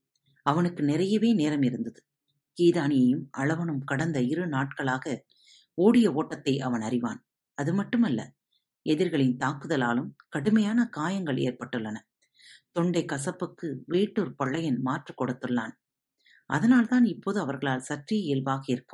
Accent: native